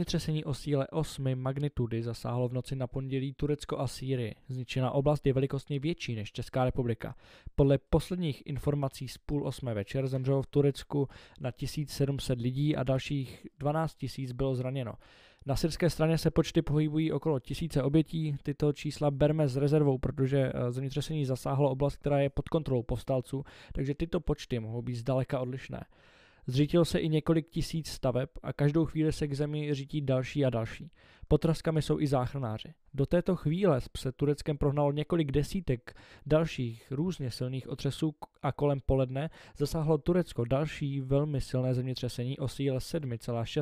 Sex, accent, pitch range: male, native, 130-150 Hz